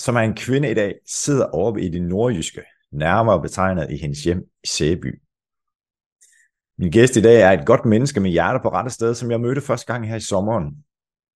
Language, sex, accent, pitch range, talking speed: Danish, male, native, 90-125 Hz, 205 wpm